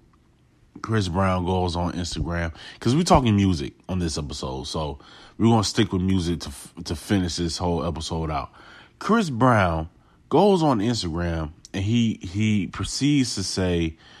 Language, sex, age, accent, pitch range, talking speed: English, male, 30-49, American, 85-120 Hz, 155 wpm